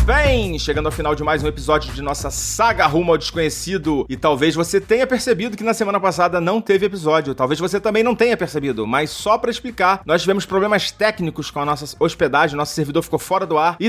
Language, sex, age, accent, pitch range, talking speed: Portuguese, male, 30-49, Brazilian, 155-205 Hz, 220 wpm